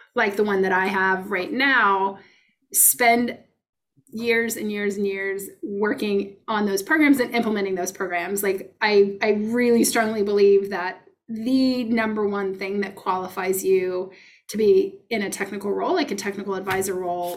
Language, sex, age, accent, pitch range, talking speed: English, female, 20-39, American, 195-230 Hz, 160 wpm